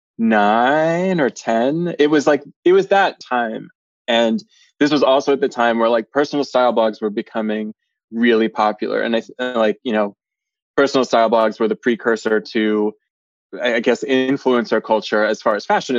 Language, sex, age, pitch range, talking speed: English, male, 20-39, 110-140 Hz, 175 wpm